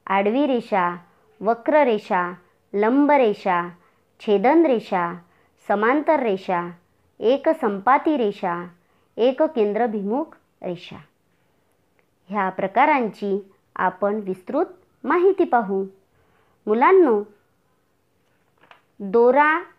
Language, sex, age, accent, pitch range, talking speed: Marathi, male, 40-59, native, 205-295 Hz, 65 wpm